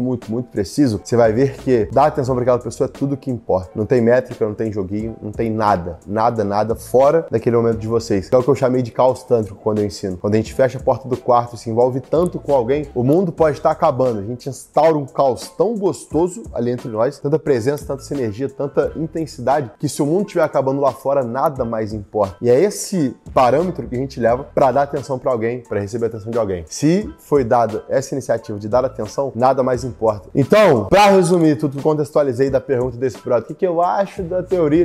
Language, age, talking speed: Portuguese, 20-39, 235 wpm